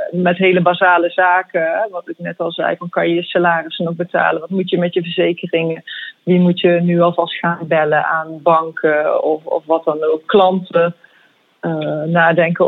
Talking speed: 185 wpm